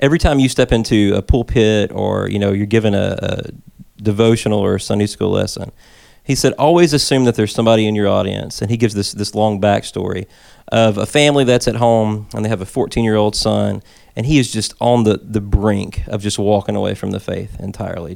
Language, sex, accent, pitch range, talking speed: English, male, American, 100-120 Hz, 215 wpm